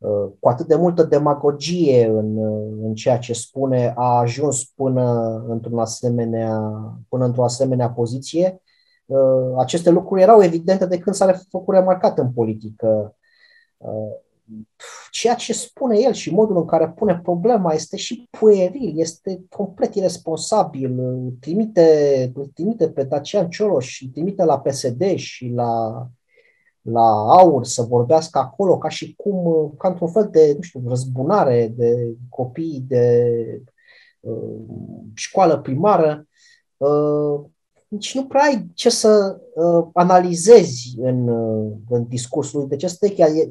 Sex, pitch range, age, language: male, 125-205 Hz, 30-49, Romanian